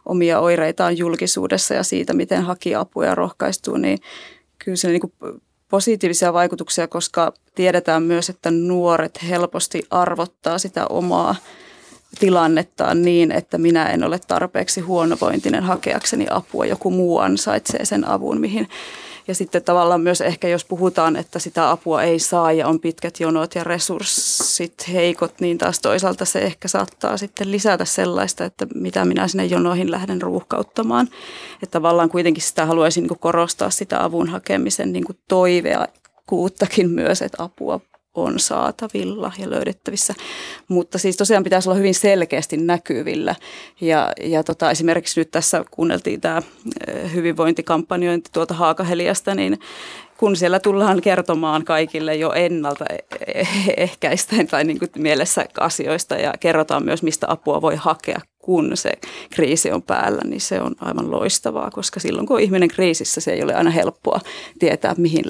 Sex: female